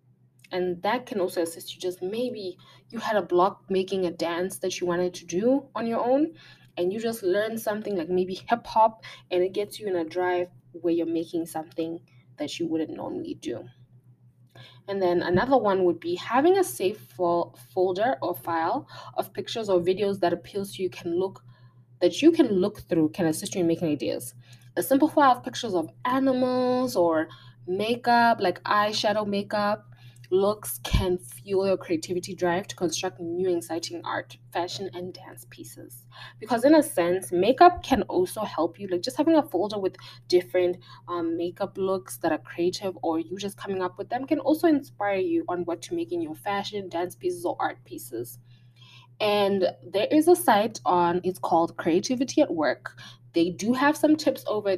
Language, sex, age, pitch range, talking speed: English, female, 20-39, 165-210 Hz, 185 wpm